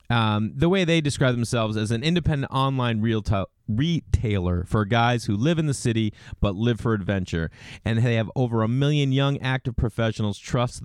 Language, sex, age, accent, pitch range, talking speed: English, male, 30-49, American, 105-130 Hz, 190 wpm